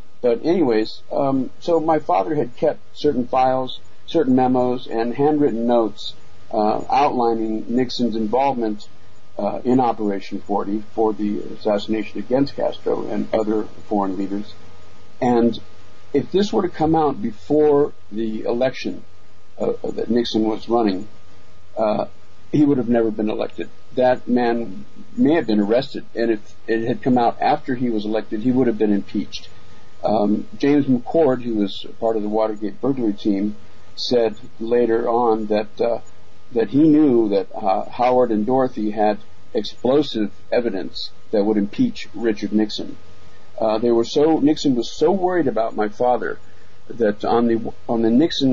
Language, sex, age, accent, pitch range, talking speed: English, male, 50-69, American, 105-130 Hz, 155 wpm